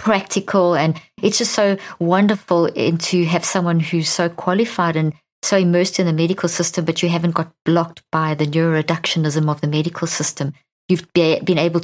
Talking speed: 175 wpm